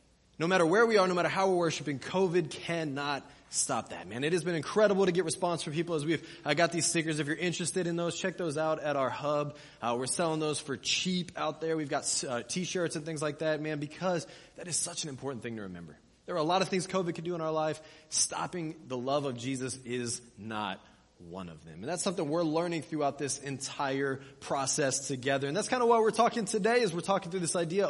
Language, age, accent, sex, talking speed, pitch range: English, 20-39, American, male, 240 wpm, 145-180 Hz